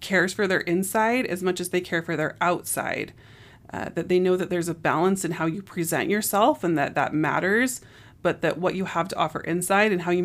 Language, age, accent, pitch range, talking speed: English, 30-49, American, 160-190 Hz, 235 wpm